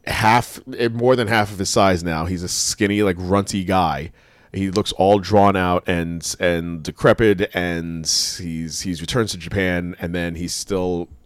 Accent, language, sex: American, English, male